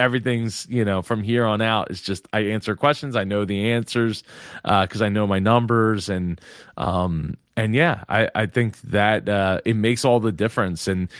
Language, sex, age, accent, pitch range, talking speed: English, male, 30-49, American, 110-150 Hz, 200 wpm